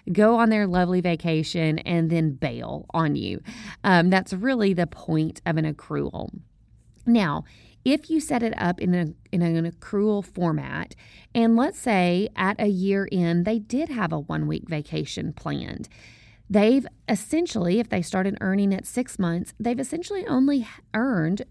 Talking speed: 160 wpm